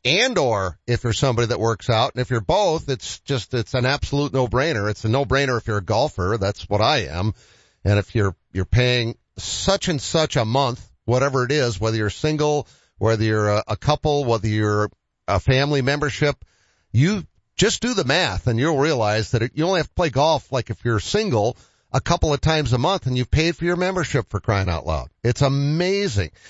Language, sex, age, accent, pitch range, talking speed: English, male, 50-69, American, 105-140 Hz, 205 wpm